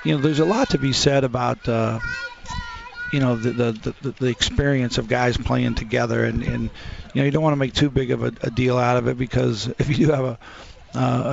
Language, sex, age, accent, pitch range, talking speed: English, male, 50-69, American, 120-135 Hz, 245 wpm